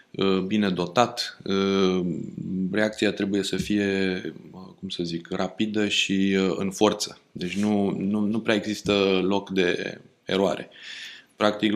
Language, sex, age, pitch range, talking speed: Romanian, male, 20-39, 95-105 Hz, 115 wpm